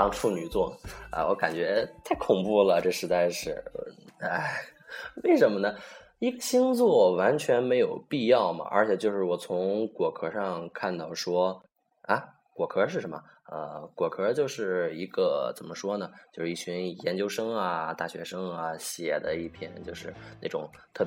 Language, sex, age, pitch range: Chinese, male, 20-39, 90-135 Hz